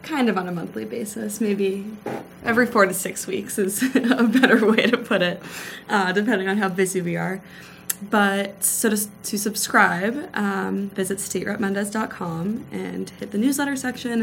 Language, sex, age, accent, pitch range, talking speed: English, female, 20-39, American, 185-215 Hz, 165 wpm